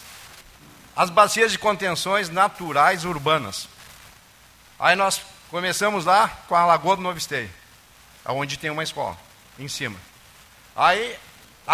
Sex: male